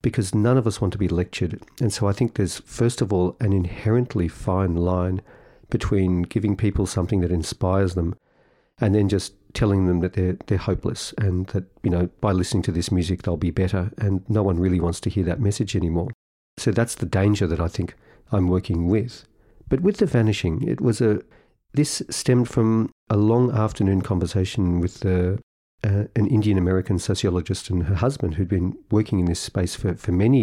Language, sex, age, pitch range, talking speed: English, male, 50-69, 90-110 Hz, 195 wpm